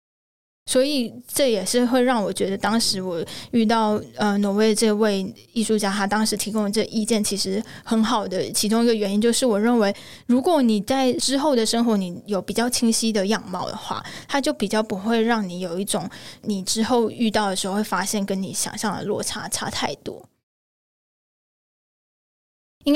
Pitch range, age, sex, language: 200-235 Hz, 10-29, female, Chinese